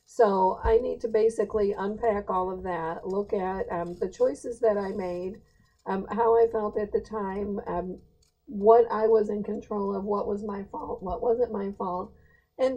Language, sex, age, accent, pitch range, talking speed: English, female, 50-69, American, 180-225 Hz, 190 wpm